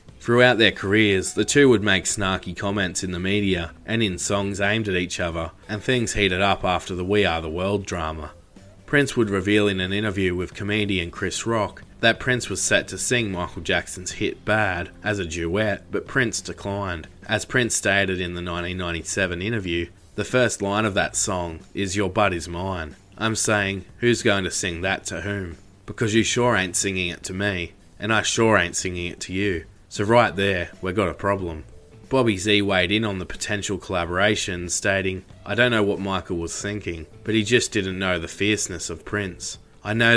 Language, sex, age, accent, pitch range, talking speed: English, male, 20-39, Australian, 90-105 Hz, 200 wpm